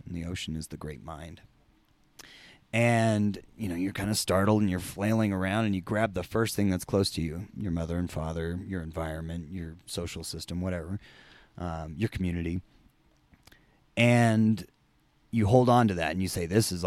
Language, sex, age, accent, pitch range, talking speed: English, male, 30-49, American, 85-110 Hz, 190 wpm